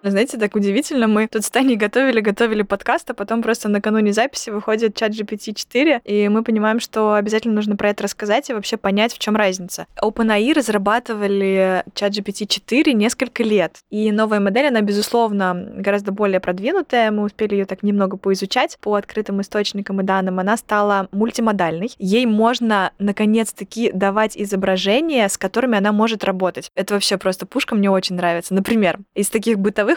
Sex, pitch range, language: female, 200-225 Hz, Russian